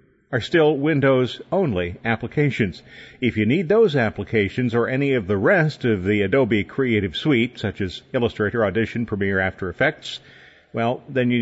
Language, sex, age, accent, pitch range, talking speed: English, male, 50-69, American, 110-135 Hz, 160 wpm